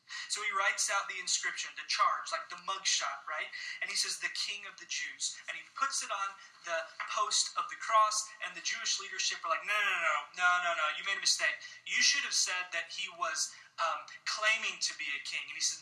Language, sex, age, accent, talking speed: English, male, 20-39, American, 240 wpm